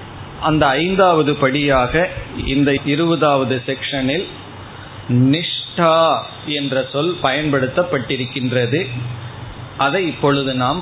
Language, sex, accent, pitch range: Tamil, male, native, 115-150 Hz